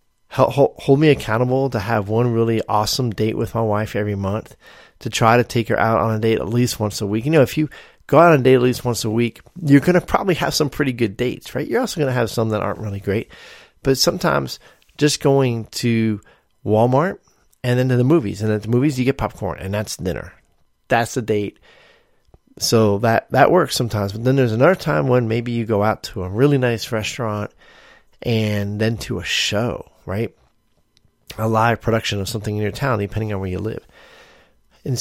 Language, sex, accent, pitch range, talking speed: English, male, American, 110-135 Hz, 215 wpm